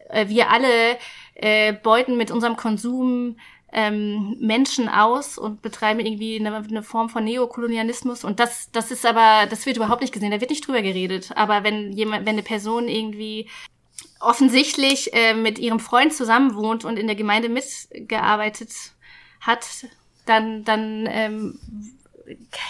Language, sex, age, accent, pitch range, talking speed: German, female, 20-39, German, 215-240 Hz, 150 wpm